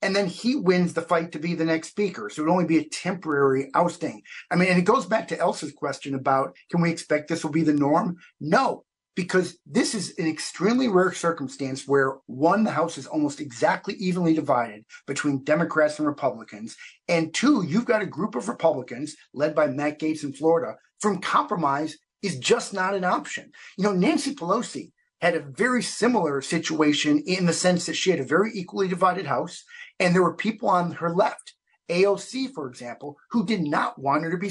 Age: 50-69